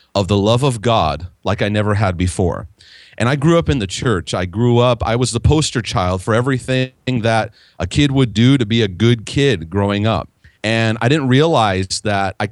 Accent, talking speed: American, 215 wpm